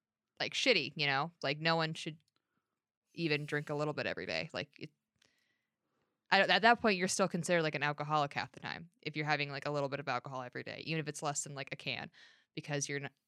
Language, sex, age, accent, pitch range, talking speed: English, female, 20-39, American, 145-175 Hz, 235 wpm